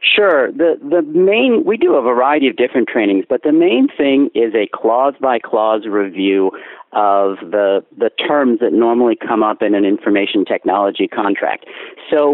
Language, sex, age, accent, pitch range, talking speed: English, male, 50-69, American, 105-150 Hz, 170 wpm